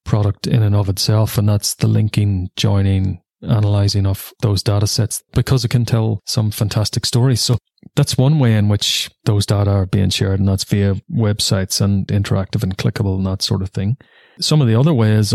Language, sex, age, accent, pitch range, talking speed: English, male, 30-49, Irish, 100-115 Hz, 200 wpm